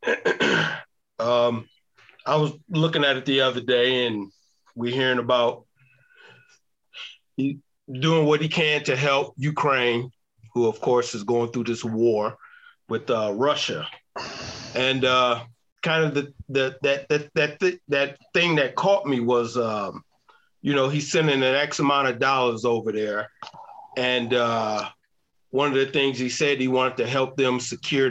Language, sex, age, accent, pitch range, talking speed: English, male, 40-59, American, 120-140 Hz, 160 wpm